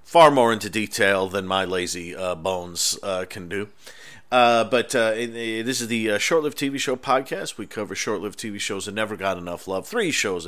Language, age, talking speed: English, 40-59, 200 wpm